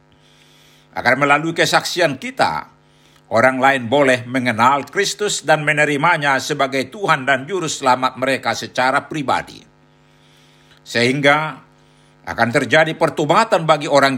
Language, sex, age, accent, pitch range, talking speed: Indonesian, male, 60-79, native, 130-170 Hz, 105 wpm